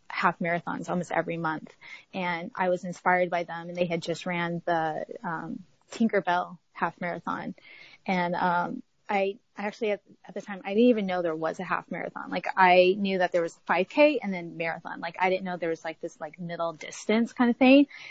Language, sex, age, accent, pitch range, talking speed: English, female, 20-39, American, 170-200 Hz, 205 wpm